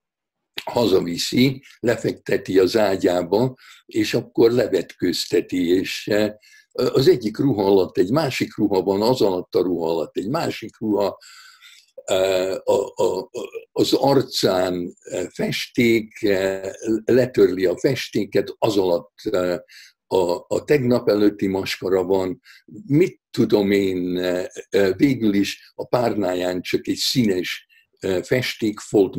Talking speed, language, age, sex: 100 wpm, Hungarian, 60-79, male